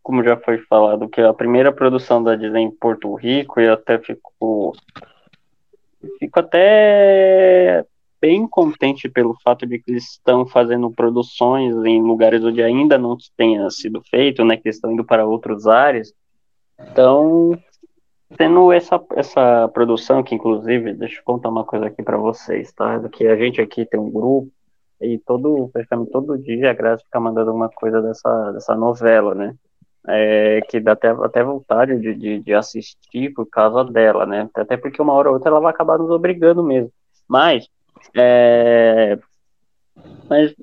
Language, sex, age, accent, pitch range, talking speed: Portuguese, male, 20-39, Brazilian, 115-155 Hz, 165 wpm